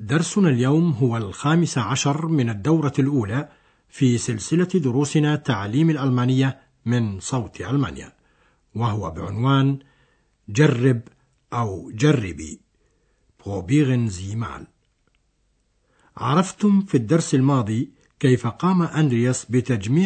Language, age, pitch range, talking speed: Arabic, 60-79, 120-155 Hz, 95 wpm